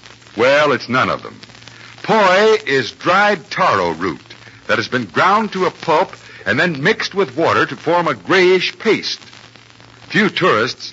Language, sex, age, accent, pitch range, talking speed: English, male, 60-79, American, 150-210 Hz, 160 wpm